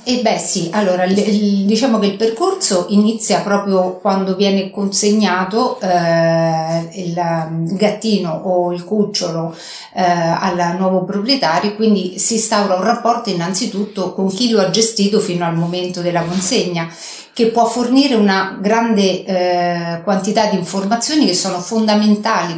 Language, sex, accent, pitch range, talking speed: Italian, female, native, 180-210 Hz, 140 wpm